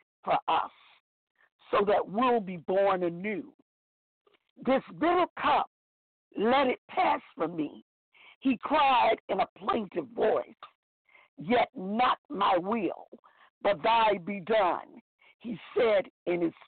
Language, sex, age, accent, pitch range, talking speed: English, female, 60-79, American, 220-310 Hz, 120 wpm